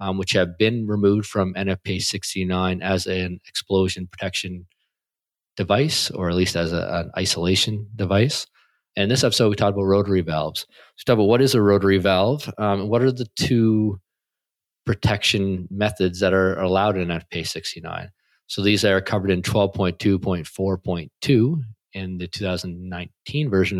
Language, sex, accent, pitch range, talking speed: English, male, American, 90-110 Hz, 145 wpm